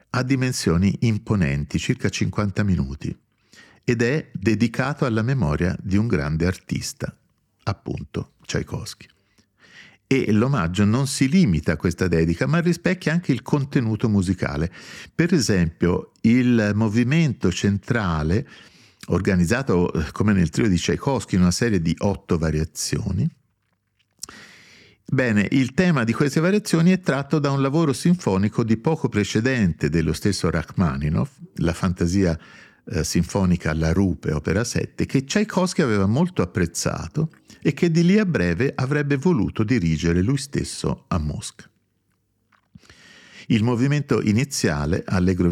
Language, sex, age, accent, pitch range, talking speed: Italian, male, 50-69, native, 90-135 Hz, 125 wpm